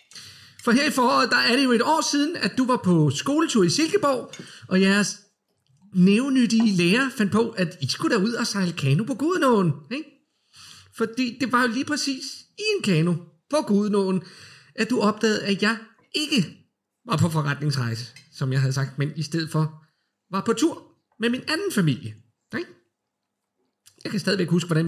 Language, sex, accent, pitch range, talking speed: Danish, male, native, 155-230 Hz, 175 wpm